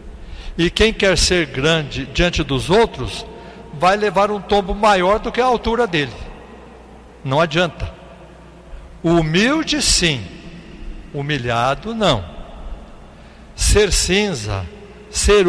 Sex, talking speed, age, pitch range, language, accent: male, 105 wpm, 60-79, 125-200 Hz, Portuguese, Brazilian